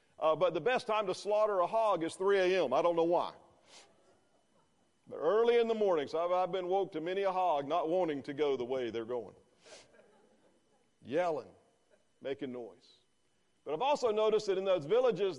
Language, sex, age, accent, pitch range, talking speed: English, male, 50-69, American, 155-225 Hz, 190 wpm